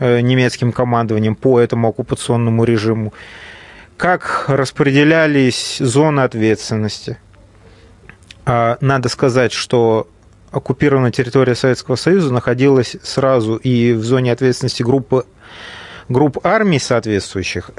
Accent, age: native, 30-49